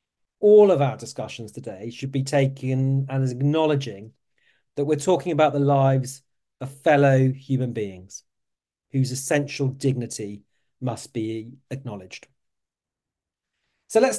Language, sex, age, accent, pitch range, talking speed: English, male, 40-59, British, 130-165 Hz, 125 wpm